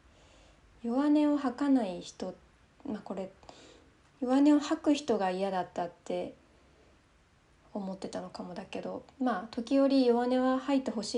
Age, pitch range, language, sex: 20-39, 190-245 Hz, Japanese, female